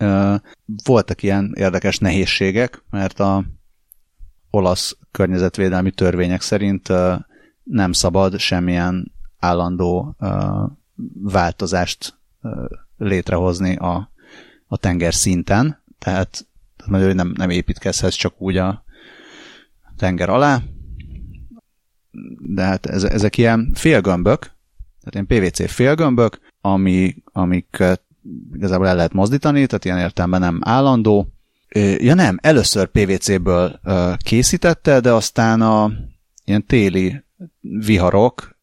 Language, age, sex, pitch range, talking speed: Hungarian, 30-49, male, 90-105 Hz, 95 wpm